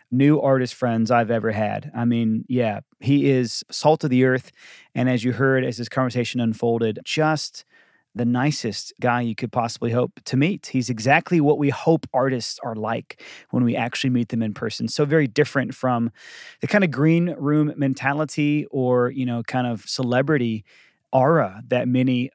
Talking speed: 180 wpm